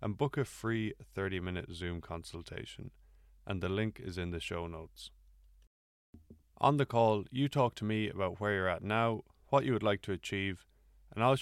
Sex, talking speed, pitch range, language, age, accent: male, 185 wpm, 85-110 Hz, English, 20-39, Irish